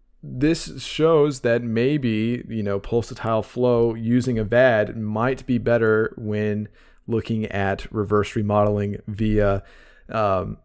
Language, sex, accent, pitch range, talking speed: English, male, American, 105-120 Hz, 120 wpm